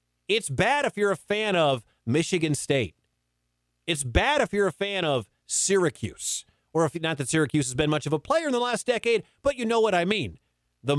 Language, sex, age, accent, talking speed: English, male, 40-59, American, 215 wpm